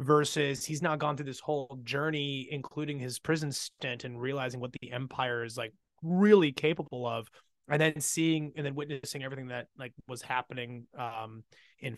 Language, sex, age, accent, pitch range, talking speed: English, male, 20-39, American, 125-155 Hz, 175 wpm